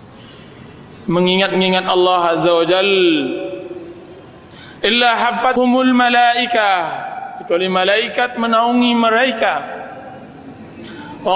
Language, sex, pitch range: Indonesian, male, 210-285 Hz